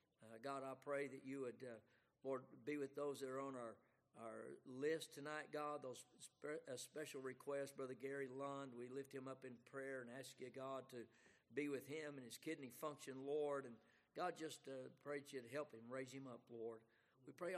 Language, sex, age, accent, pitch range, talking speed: English, male, 60-79, American, 135-160 Hz, 215 wpm